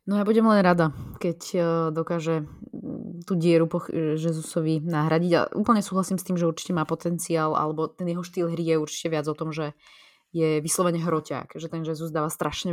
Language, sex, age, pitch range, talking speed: Slovak, female, 20-39, 150-175 Hz, 195 wpm